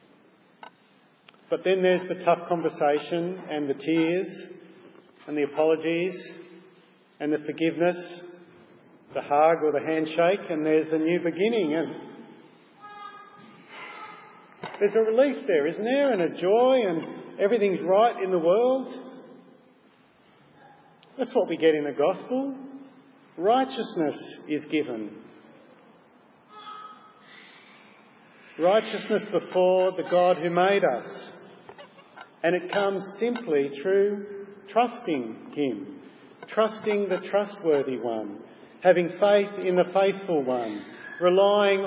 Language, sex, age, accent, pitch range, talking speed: English, male, 40-59, Australian, 165-220 Hz, 110 wpm